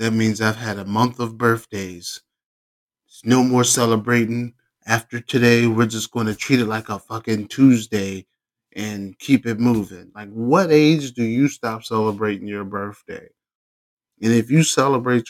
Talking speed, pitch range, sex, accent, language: 160 wpm, 105-120 Hz, male, American, English